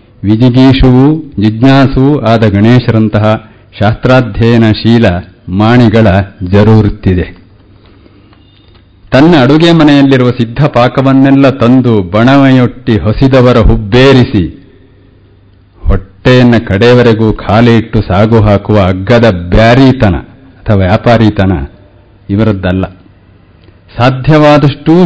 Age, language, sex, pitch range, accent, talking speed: 50-69, Kannada, male, 100-130 Hz, native, 65 wpm